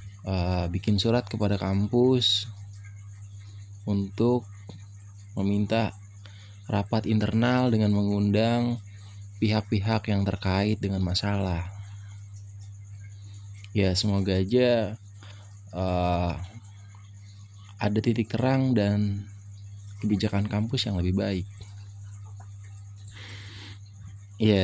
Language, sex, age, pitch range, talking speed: Indonesian, male, 20-39, 100-105 Hz, 75 wpm